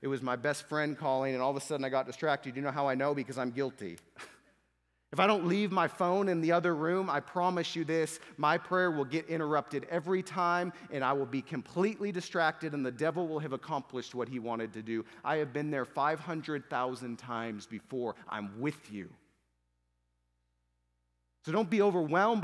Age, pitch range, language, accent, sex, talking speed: 30-49, 125-170 Hz, English, American, male, 200 wpm